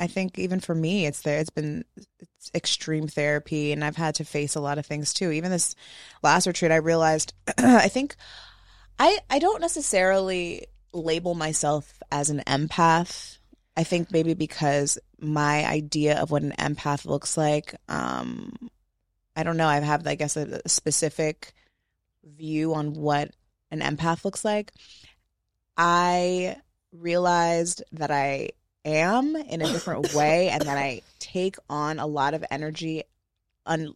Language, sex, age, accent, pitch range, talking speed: English, female, 20-39, American, 145-170 Hz, 155 wpm